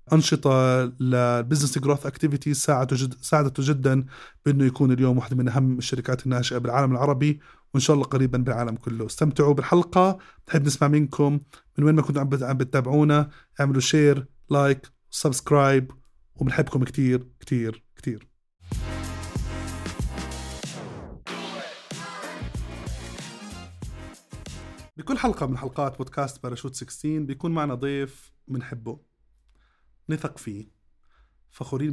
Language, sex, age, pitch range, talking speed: Arabic, male, 20-39, 125-145 Hz, 105 wpm